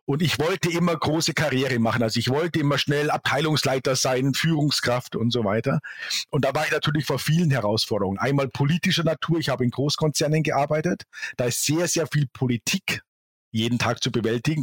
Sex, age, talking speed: male, 50-69, 180 wpm